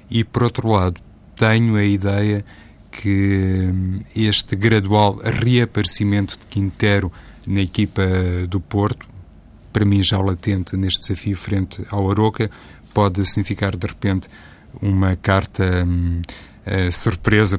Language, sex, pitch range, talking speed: Portuguese, male, 95-105 Hz, 120 wpm